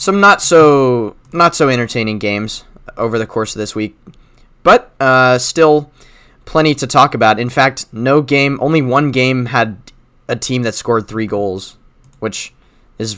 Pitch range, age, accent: 105-130 Hz, 20-39, American